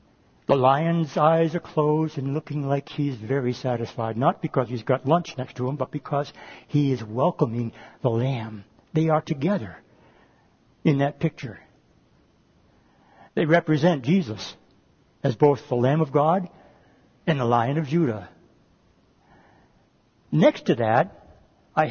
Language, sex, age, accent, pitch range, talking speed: English, male, 60-79, American, 125-170 Hz, 135 wpm